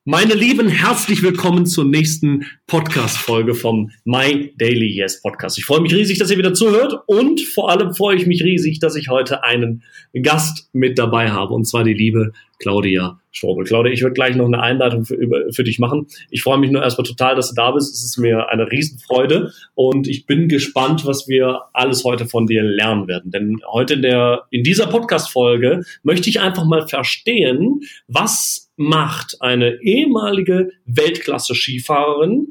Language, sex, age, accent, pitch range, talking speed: German, male, 30-49, German, 125-185 Hz, 175 wpm